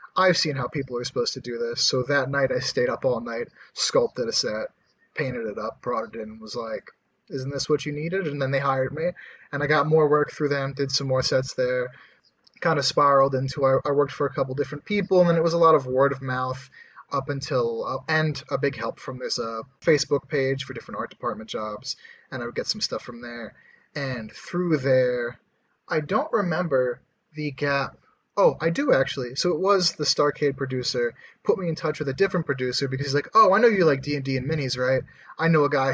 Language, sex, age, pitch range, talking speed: English, male, 30-49, 125-150 Hz, 230 wpm